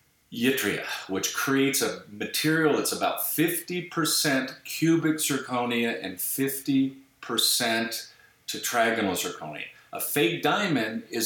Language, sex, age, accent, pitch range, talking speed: English, male, 50-69, American, 110-135 Hz, 95 wpm